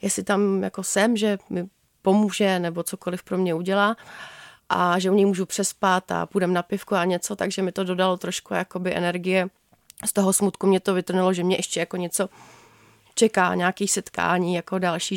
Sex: female